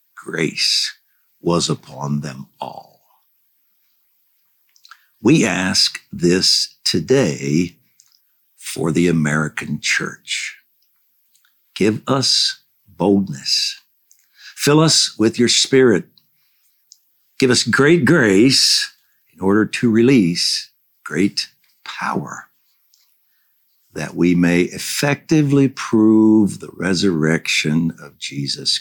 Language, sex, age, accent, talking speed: English, male, 60-79, American, 85 wpm